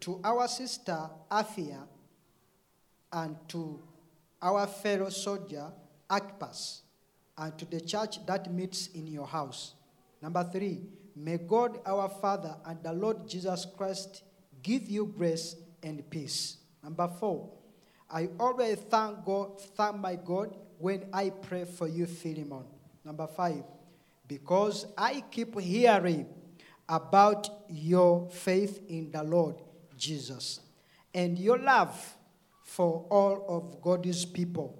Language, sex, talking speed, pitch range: English, male, 120 wpm, 165-200 Hz